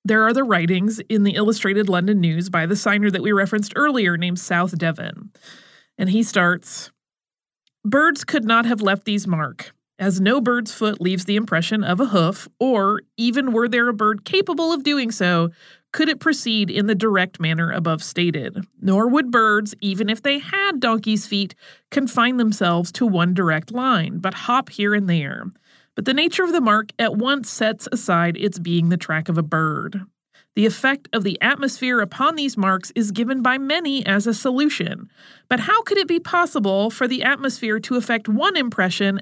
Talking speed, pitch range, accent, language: 190 wpm, 190-250 Hz, American, English